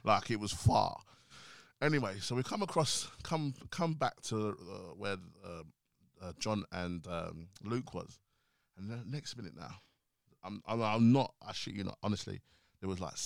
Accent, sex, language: British, male, English